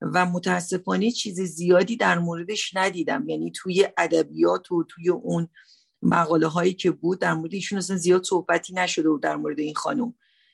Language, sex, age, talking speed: Persian, female, 50-69, 150 wpm